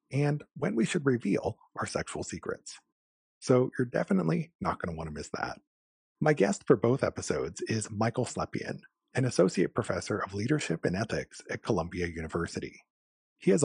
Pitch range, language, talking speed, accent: 90-130 Hz, English, 165 wpm, American